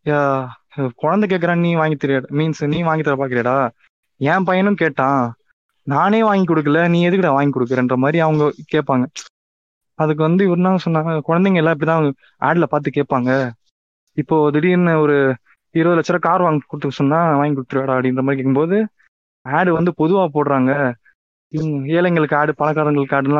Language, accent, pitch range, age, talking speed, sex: Tamil, native, 135-165 Hz, 20-39, 145 wpm, male